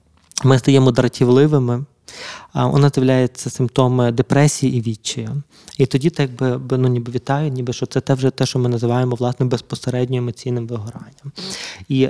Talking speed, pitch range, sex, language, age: 155 wpm, 125-140 Hz, male, Ukrainian, 20-39